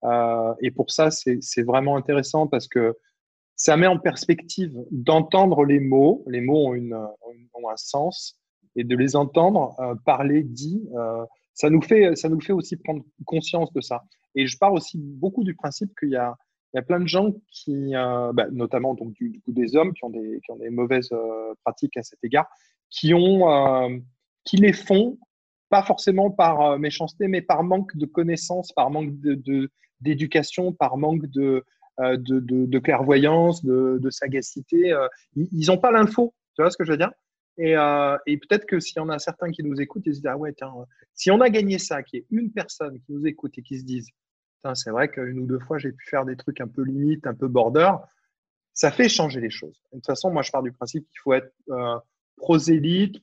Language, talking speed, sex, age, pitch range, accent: French, 220 wpm, male, 20-39, 130-170 Hz, French